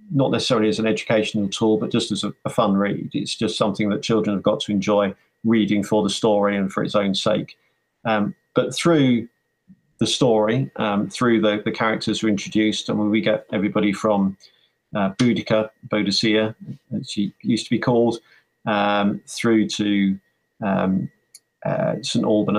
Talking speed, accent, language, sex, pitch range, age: 180 wpm, British, English, male, 105-130 Hz, 40-59